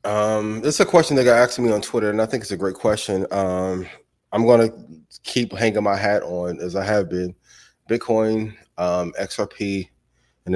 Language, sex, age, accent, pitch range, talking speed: English, male, 20-39, American, 95-115 Hz, 195 wpm